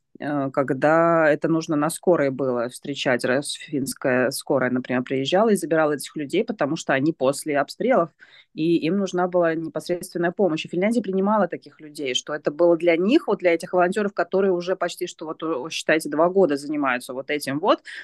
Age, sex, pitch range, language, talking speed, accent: 20-39, female, 150-190 Hz, Russian, 175 wpm, native